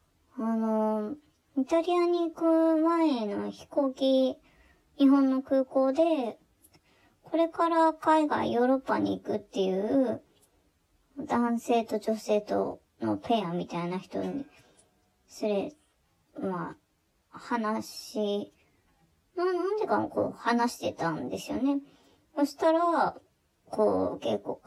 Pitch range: 200-280 Hz